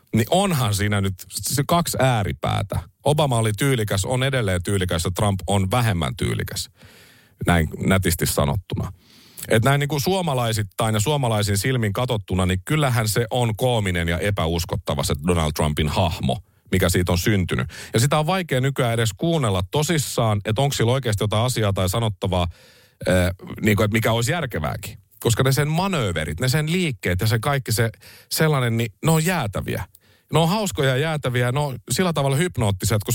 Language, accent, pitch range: Finnish, native, 95-135 Hz